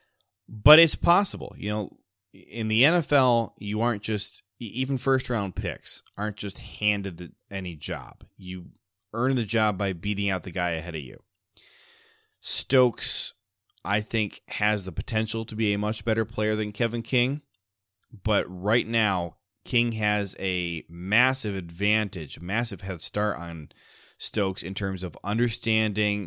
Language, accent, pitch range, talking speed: English, American, 90-110 Hz, 145 wpm